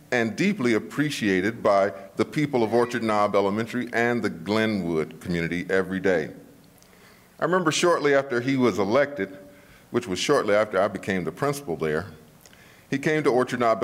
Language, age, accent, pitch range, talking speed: English, 40-59, American, 105-145 Hz, 160 wpm